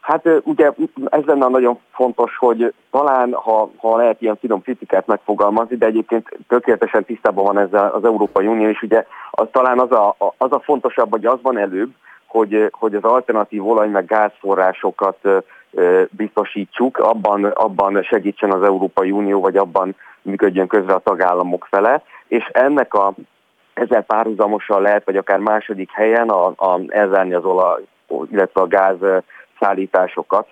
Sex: male